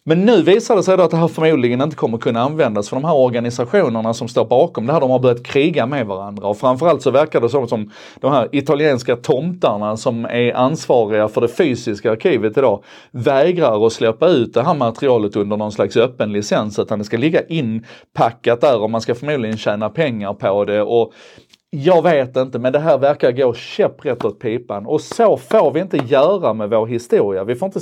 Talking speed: 210 wpm